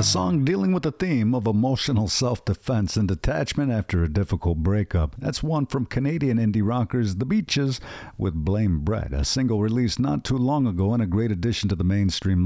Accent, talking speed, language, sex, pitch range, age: American, 195 wpm, English, male, 90-125 Hz, 50-69